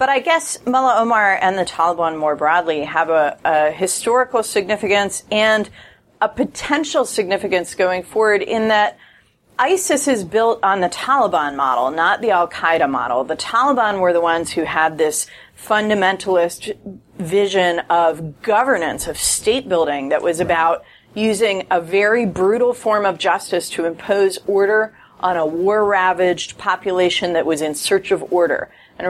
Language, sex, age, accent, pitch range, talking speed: English, female, 40-59, American, 175-220 Hz, 155 wpm